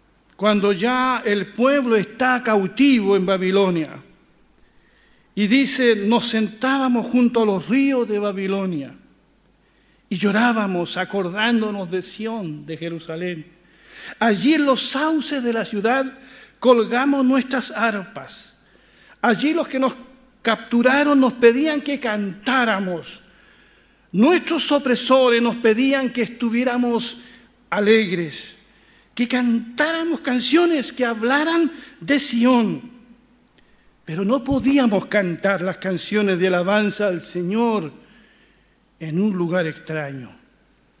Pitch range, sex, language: 195-255 Hz, male, Spanish